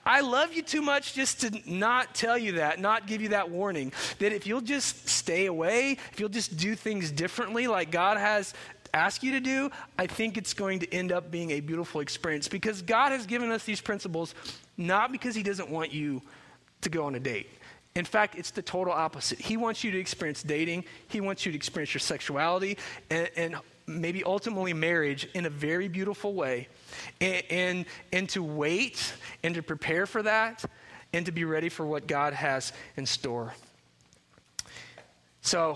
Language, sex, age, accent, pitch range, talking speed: English, male, 30-49, American, 150-200 Hz, 190 wpm